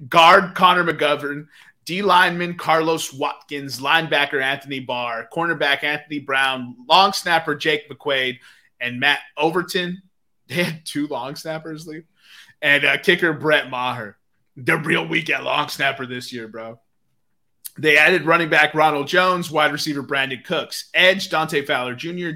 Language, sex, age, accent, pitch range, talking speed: English, male, 30-49, American, 135-165 Hz, 140 wpm